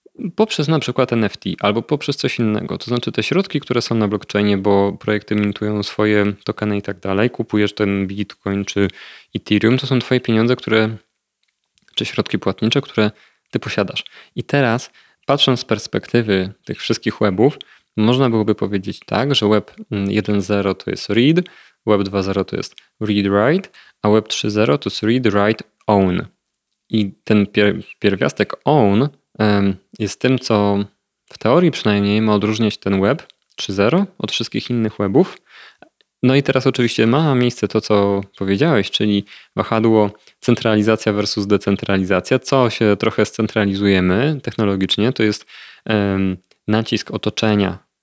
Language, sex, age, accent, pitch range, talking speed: Polish, male, 20-39, native, 100-120 Hz, 140 wpm